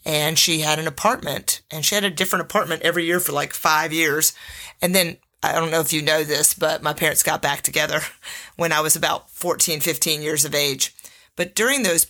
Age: 30-49